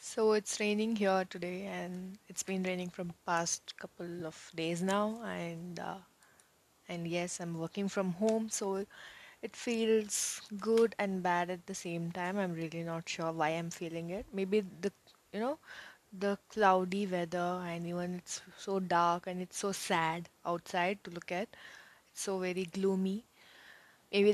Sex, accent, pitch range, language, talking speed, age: female, Indian, 175-205 Hz, English, 165 wpm, 20-39